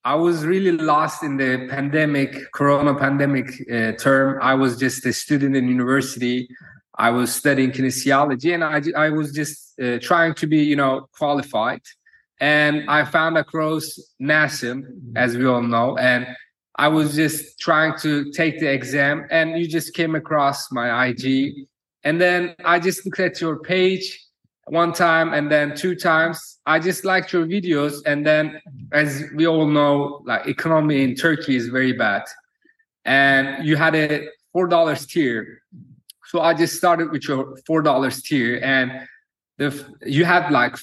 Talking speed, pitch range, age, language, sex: 165 wpm, 135-165 Hz, 30-49, English, male